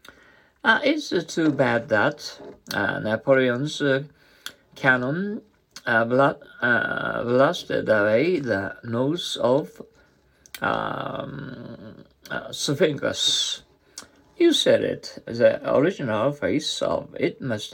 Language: Japanese